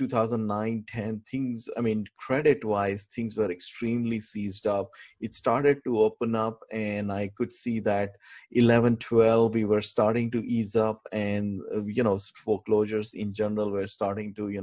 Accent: Indian